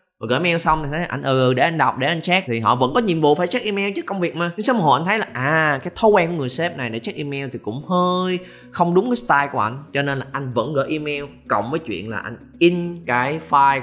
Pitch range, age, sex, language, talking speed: 110-155 Hz, 20-39, male, Vietnamese, 295 wpm